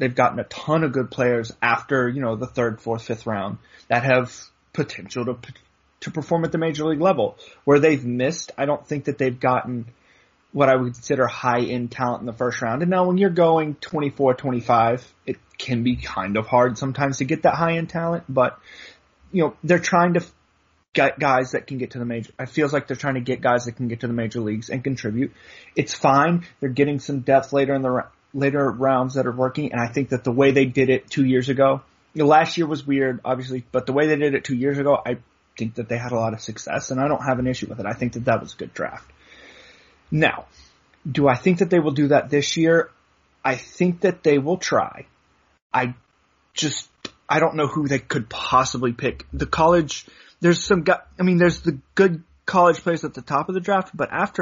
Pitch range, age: 125-155 Hz, 30-49